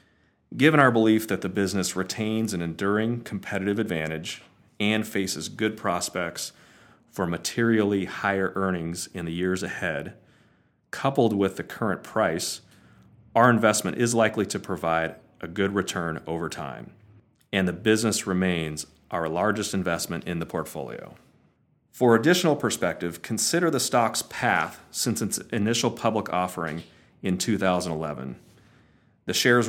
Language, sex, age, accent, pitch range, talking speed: English, male, 40-59, American, 85-110 Hz, 130 wpm